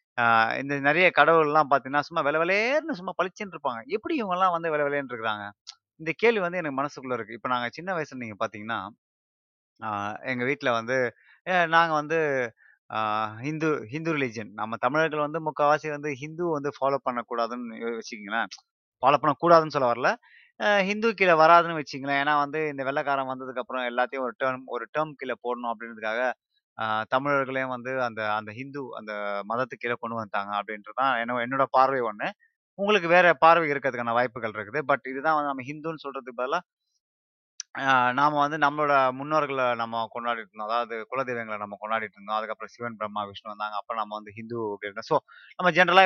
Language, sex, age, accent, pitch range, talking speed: Tamil, male, 30-49, native, 115-155 Hz, 150 wpm